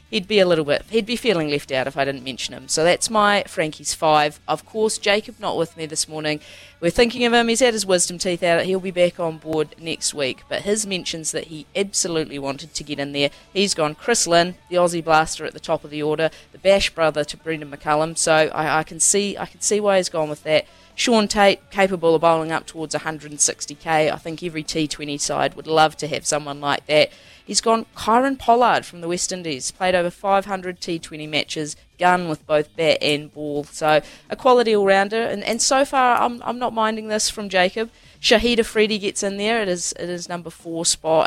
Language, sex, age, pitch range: English, female, 30-49, 155-200 Hz